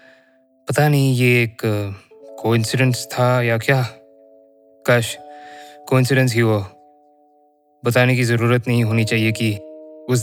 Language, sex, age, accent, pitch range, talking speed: Hindi, male, 20-39, native, 110-130 Hz, 115 wpm